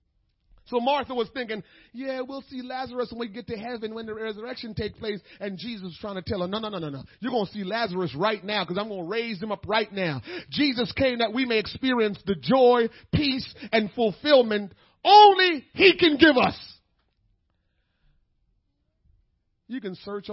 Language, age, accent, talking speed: English, 40-59, American, 190 wpm